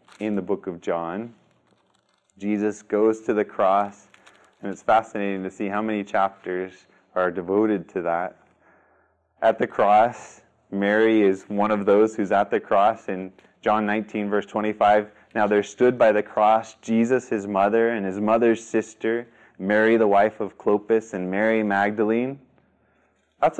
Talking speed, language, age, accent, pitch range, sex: 155 wpm, English, 20-39, American, 100-115 Hz, male